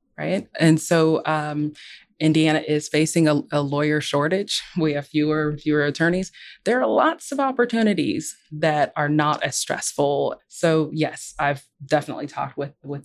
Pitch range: 145-165 Hz